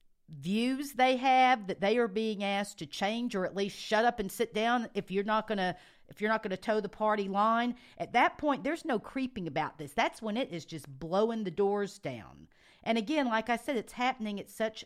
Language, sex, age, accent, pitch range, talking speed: English, female, 50-69, American, 185-245 Hz, 235 wpm